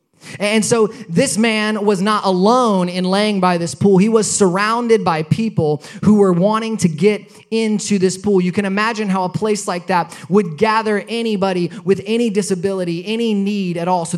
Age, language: 20-39, English